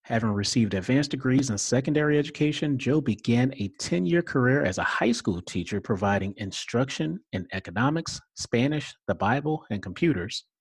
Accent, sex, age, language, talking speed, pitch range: American, male, 40-59, English, 145 wpm, 105-145 Hz